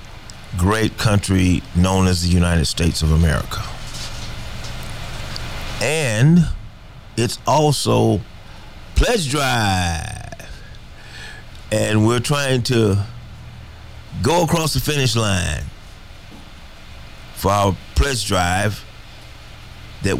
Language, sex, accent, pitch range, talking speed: English, male, American, 95-120 Hz, 85 wpm